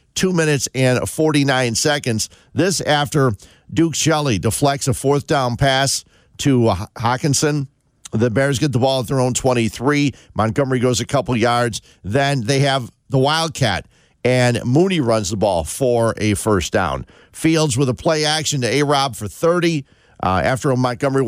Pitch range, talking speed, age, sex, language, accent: 120-145 Hz, 160 wpm, 50-69, male, English, American